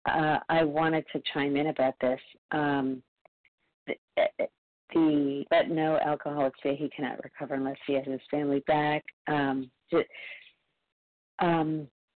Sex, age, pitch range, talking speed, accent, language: female, 40-59, 135-150 Hz, 135 wpm, American, English